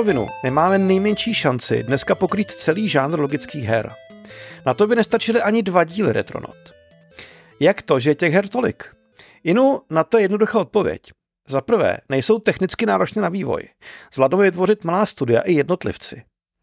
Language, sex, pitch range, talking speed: Czech, male, 140-205 Hz, 160 wpm